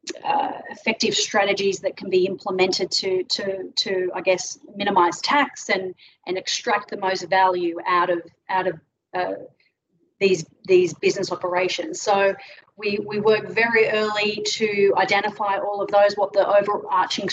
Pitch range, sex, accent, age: 185-210 Hz, female, Australian, 30-49